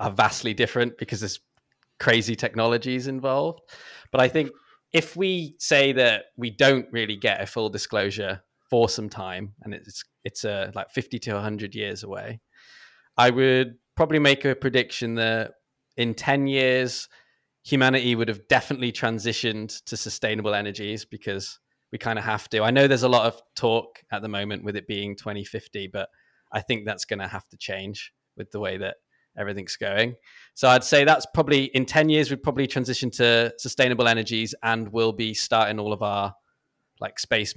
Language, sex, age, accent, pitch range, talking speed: English, male, 20-39, British, 105-130 Hz, 180 wpm